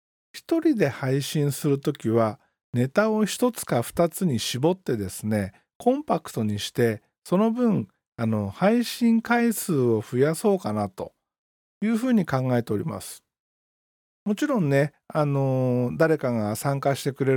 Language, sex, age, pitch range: Japanese, male, 40-59, 125-180 Hz